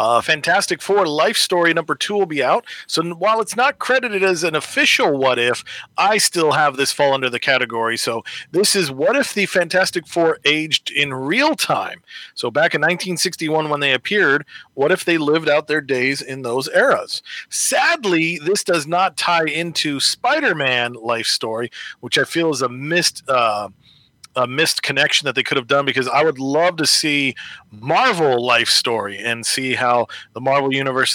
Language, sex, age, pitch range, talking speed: English, male, 40-59, 130-180 Hz, 185 wpm